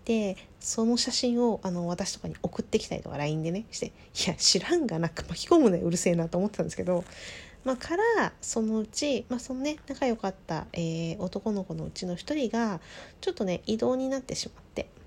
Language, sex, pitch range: Japanese, female, 175-245 Hz